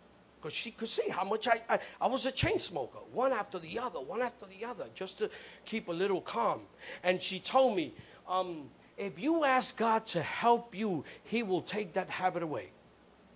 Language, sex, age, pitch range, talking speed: English, male, 50-69, 180-235 Hz, 200 wpm